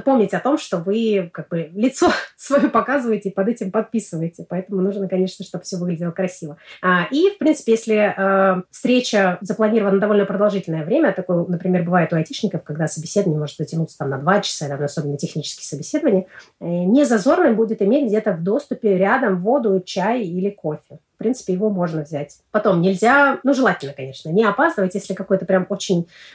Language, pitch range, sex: Russian, 180-225 Hz, female